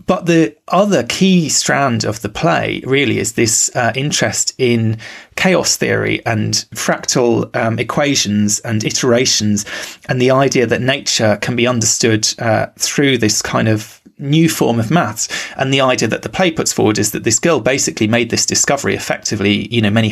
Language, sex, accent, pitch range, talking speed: English, male, British, 110-130 Hz, 175 wpm